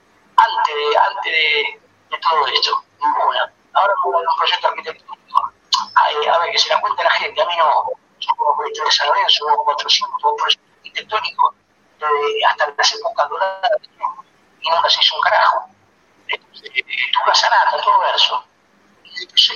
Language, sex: Spanish, male